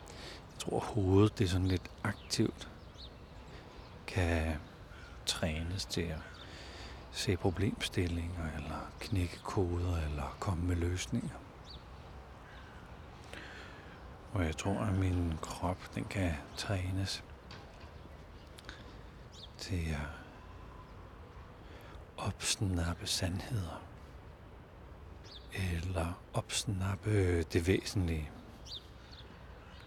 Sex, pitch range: male, 80-95 Hz